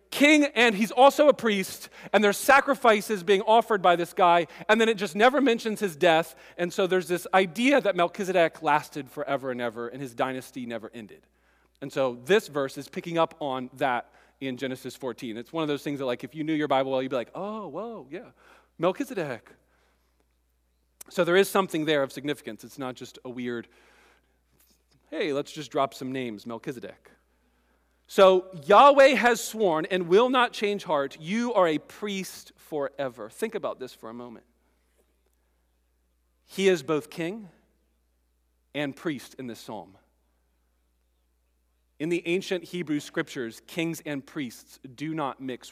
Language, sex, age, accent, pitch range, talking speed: English, male, 40-59, American, 120-195 Hz, 170 wpm